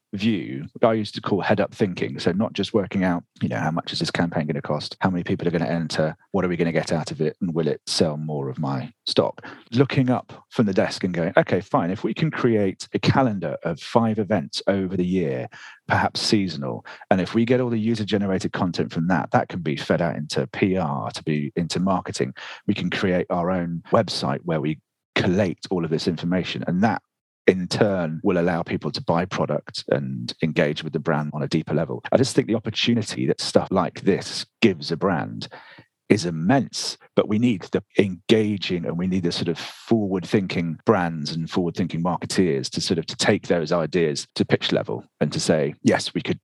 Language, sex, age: English, male, 40-59